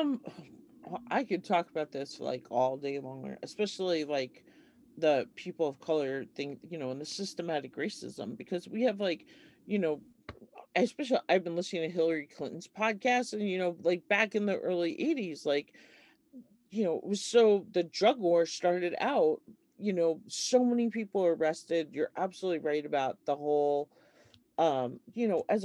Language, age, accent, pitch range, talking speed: English, 40-59, American, 150-205 Hz, 175 wpm